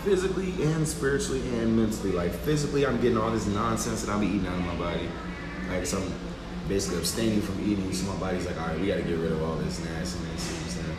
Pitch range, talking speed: 80-100 Hz, 255 wpm